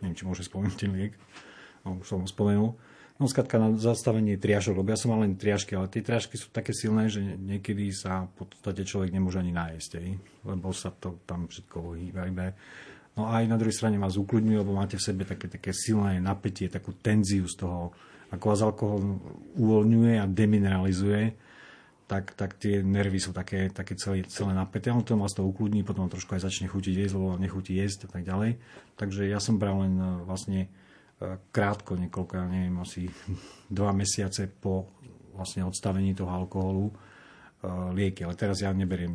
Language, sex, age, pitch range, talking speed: Slovak, male, 40-59, 95-105 Hz, 175 wpm